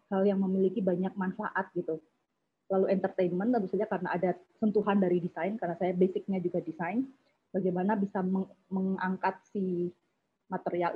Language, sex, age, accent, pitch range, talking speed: Indonesian, female, 20-39, native, 185-220 Hz, 130 wpm